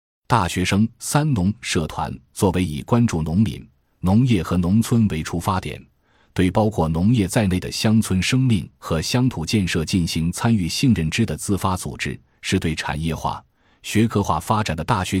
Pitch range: 80-110 Hz